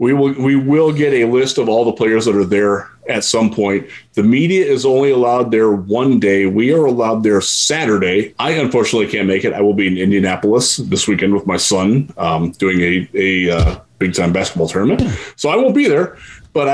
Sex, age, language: male, 30-49, English